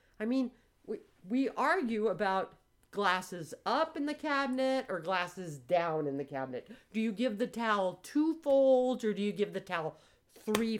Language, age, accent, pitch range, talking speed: English, 40-59, American, 180-280 Hz, 170 wpm